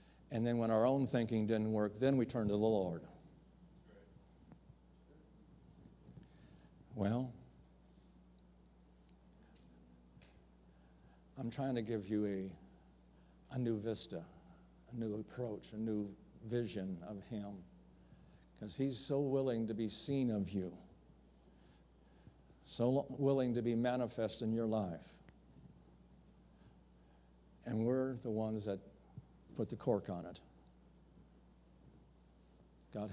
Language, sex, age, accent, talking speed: English, male, 60-79, American, 110 wpm